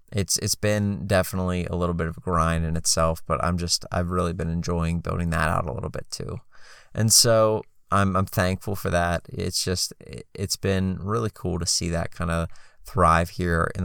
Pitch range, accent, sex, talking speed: 85-95 Hz, American, male, 205 wpm